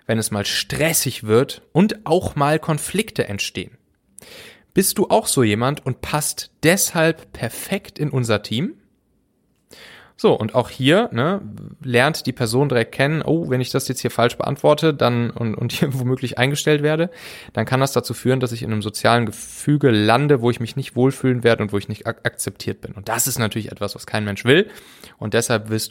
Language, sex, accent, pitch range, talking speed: German, male, German, 110-150 Hz, 195 wpm